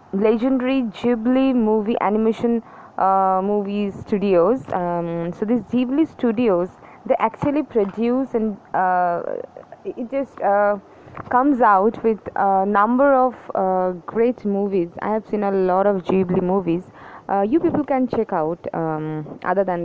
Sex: female